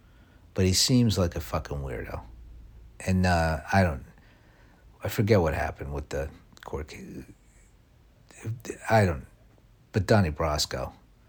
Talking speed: 130 wpm